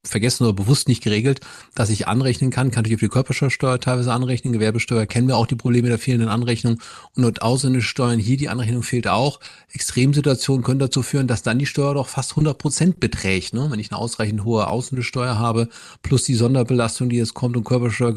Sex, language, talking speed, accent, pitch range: male, German, 200 wpm, German, 110-125 Hz